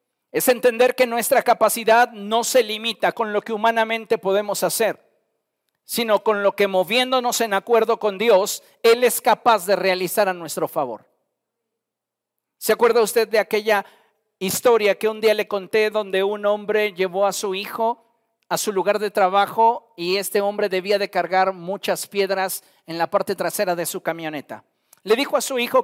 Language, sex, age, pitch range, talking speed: Spanish, male, 50-69, 195-230 Hz, 170 wpm